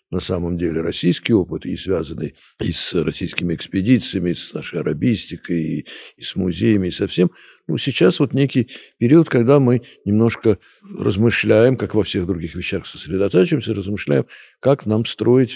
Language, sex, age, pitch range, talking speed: Russian, male, 60-79, 90-115 Hz, 155 wpm